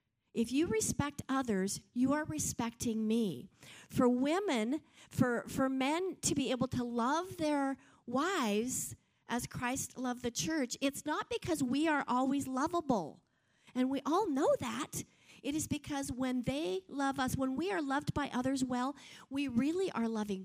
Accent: American